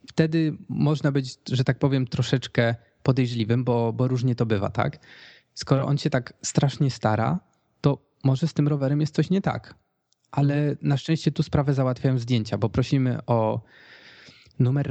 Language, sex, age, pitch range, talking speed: Polish, male, 20-39, 120-145 Hz, 160 wpm